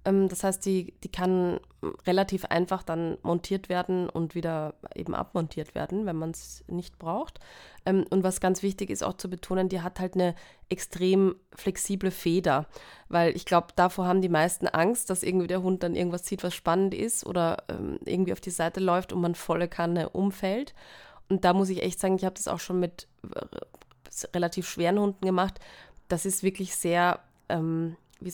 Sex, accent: female, German